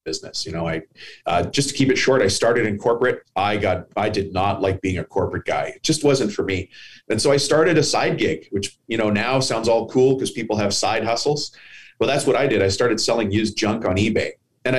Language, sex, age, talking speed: English, male, 30-49, 250 wpm